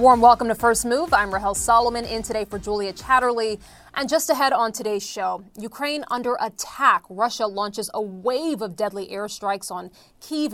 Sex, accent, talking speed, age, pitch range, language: female, American, 175 wpm, 30-49, 215-290 Hz, English